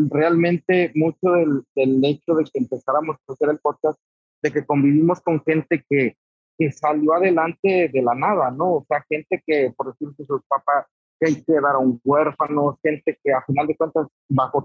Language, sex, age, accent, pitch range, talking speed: Spanish, male, 40-59, Mexican, 135-165 Hz, 175 wpm